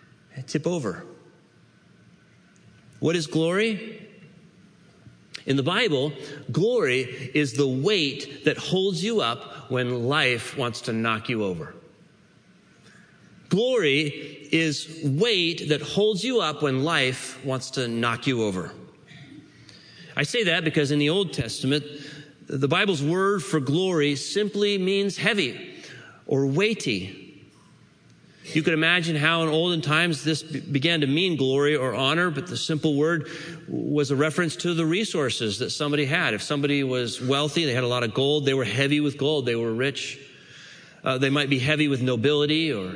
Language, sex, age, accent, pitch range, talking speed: English, male, 40-59, American, 135-165 Hz, 150 wpm